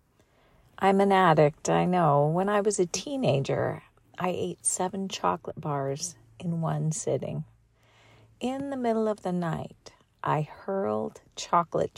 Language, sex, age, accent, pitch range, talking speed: English, female, 50-69, American, 155-200 Hz, 135 wpm